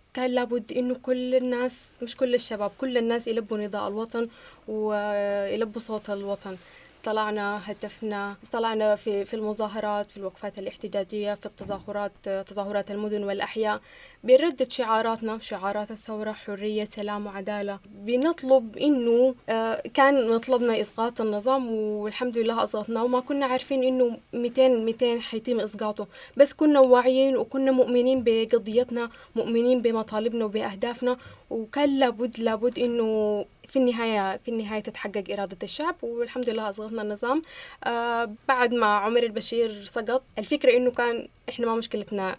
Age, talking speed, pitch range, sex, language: 10-29, 125 wpm, 205-245 Hz, female, Arabic